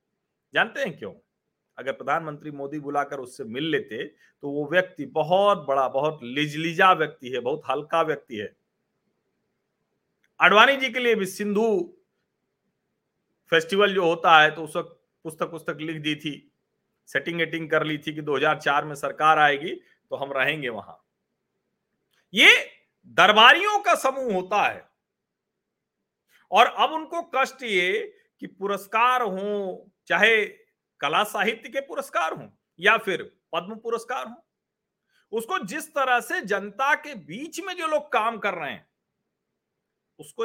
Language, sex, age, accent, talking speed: Hindi, male, 40-59, native, 115 wpm